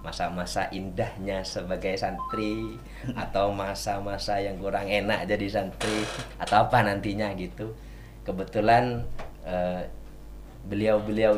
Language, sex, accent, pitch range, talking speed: Indonesian, male, native, 100-125 Hz, 95 wpm